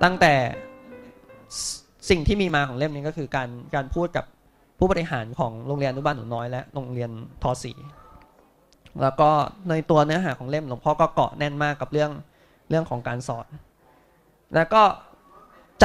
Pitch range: 130-170 Hz